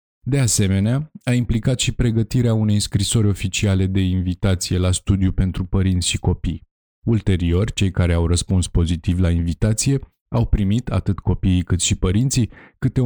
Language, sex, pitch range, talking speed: Romanian, male, 90-115 Hz, 150 wpm